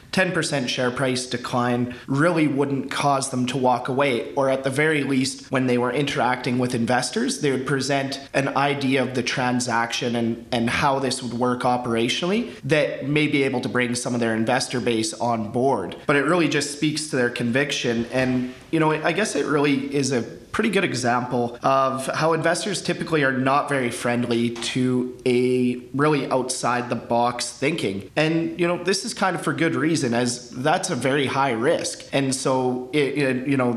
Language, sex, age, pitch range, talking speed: English, male, 30-49, 120-145 Hz, 185 wpm